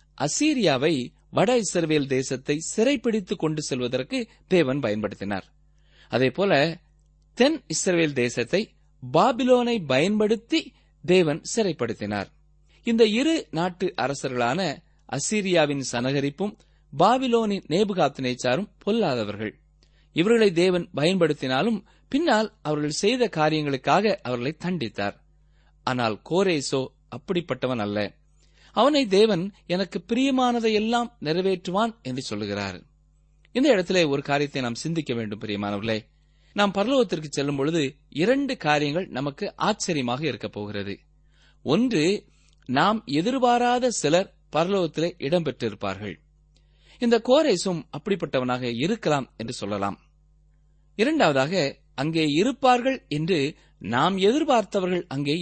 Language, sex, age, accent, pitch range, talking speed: Tamil, male, 30-49, native, 120-200 Hz, 90 wpm